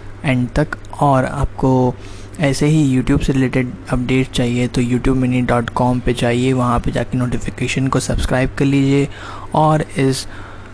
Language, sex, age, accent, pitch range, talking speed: Hindi, male, 20-39, native, 120-140 Hz, 155 wpm